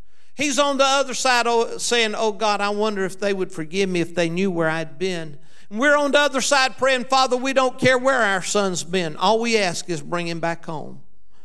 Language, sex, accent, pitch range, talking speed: English, male, American, 180-265 Hz, 225 wpm